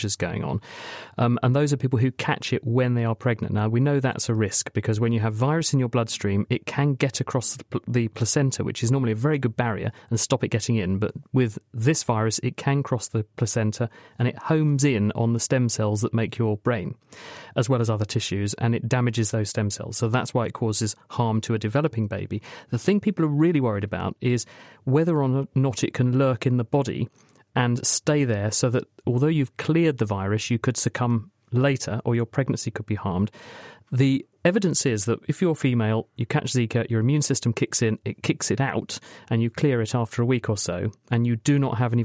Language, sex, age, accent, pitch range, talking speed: English, male, 40-59, British, 110-135 Hz, 230 wpm